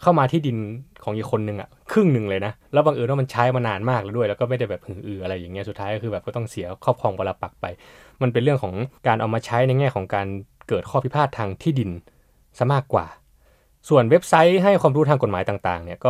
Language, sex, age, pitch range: Thai, male, 20-39, 105-145 Hz